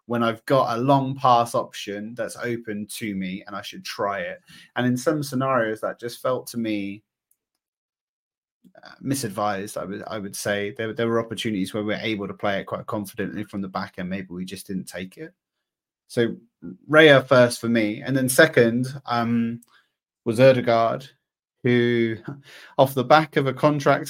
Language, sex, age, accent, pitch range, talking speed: English, male, 30-49, British, 110-140 Hz, 180 wpm